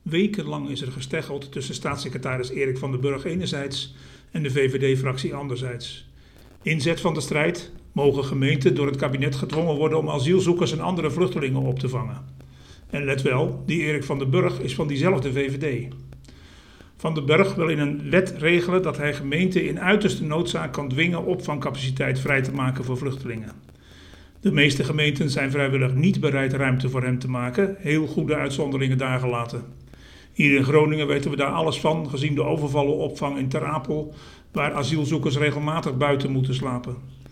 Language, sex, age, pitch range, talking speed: Dutch, male, 50-69, 130-155 Hz, 170 wpm